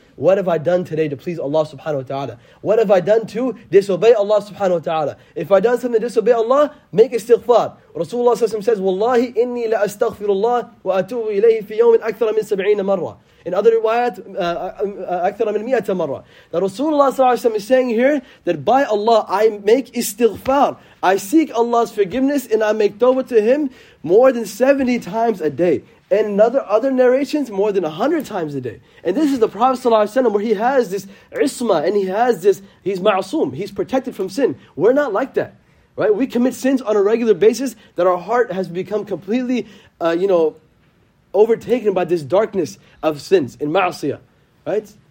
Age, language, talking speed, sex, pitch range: 30-49, English, 180 wpm, male, 190-250 Hz